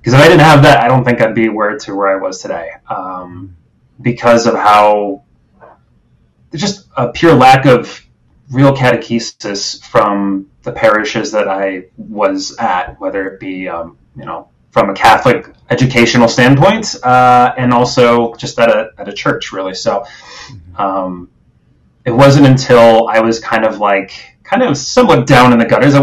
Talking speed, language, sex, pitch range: 170 wpm, English, male, 100-130 Hz